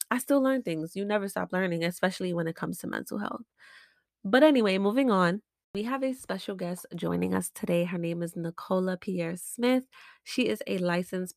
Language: English